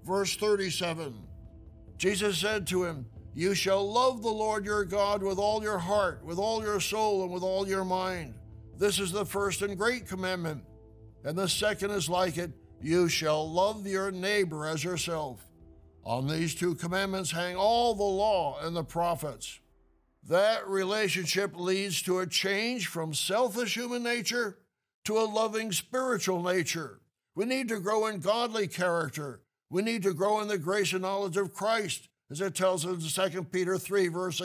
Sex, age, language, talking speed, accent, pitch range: male, 60-79, English, 170 wpm, American, 170-205 Hz